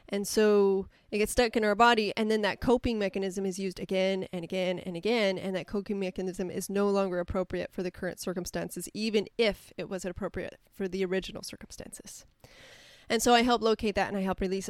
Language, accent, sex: English, American, female